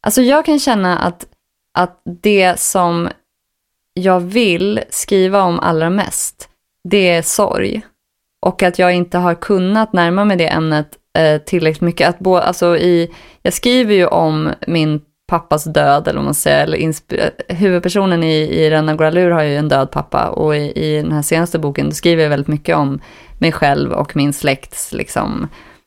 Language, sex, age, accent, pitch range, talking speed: English, female, 20-39, Swedish, 155-185 Hz, 175 wpm